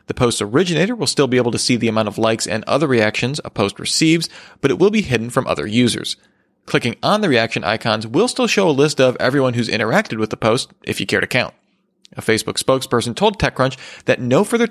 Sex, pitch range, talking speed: male, 115-145 Hz, 235 wpm